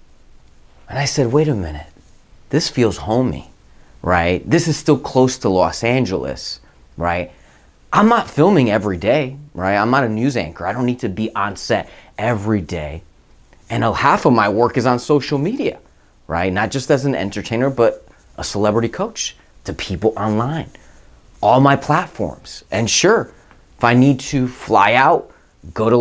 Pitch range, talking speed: 95-145 Hz, 170 wpm